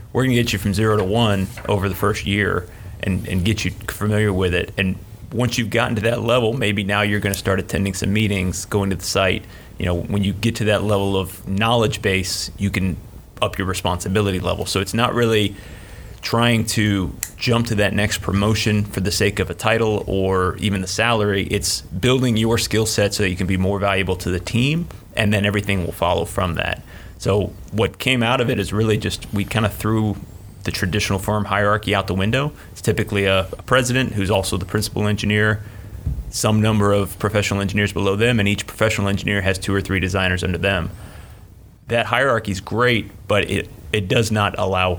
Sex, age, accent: male, 30-49, American